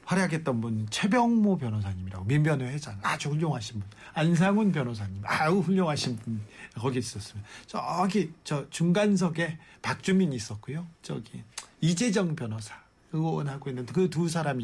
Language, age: Korean, 40-59